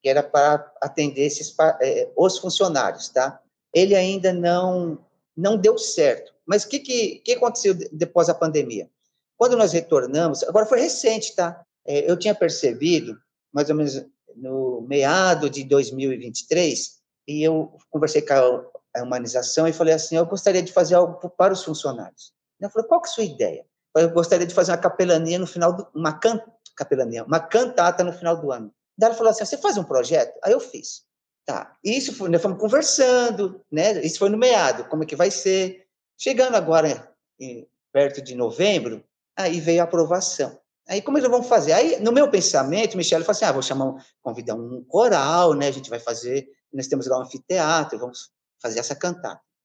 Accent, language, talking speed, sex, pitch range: Brazilian, Portuguese, 195 wpm, male, 145-210 Hz